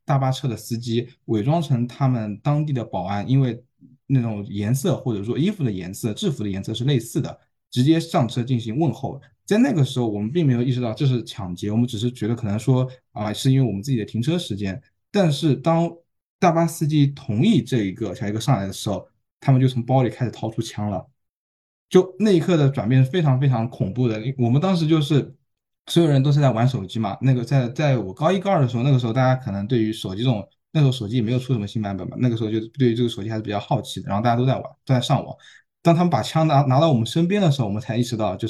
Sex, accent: male, native